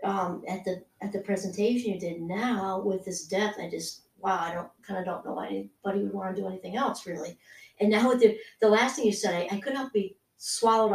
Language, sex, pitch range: English, female, 190-240 Hz